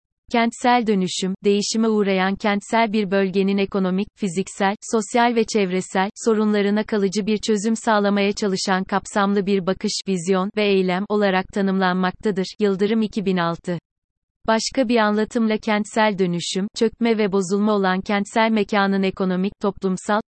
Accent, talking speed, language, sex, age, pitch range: native, 120 wpm, Turkish, female, 30-49, 190-215 Hz